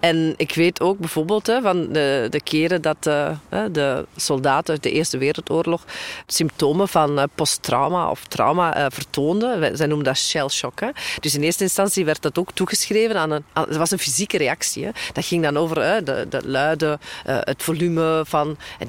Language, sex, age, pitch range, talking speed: Dutch, female, 40-59, 150-180 Hz, 195 wpm